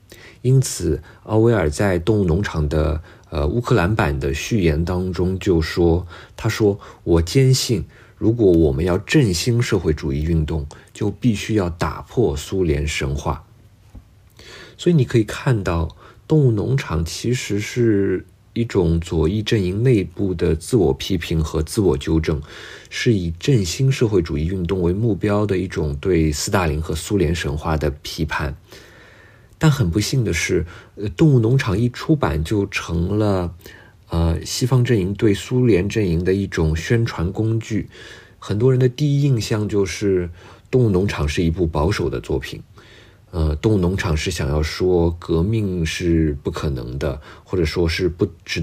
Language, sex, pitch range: Chinese, male, 80-110 Hz